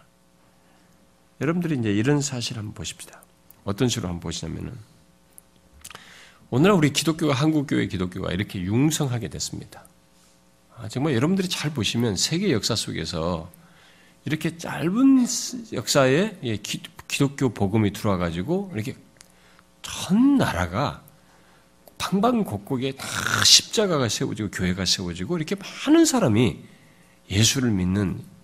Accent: native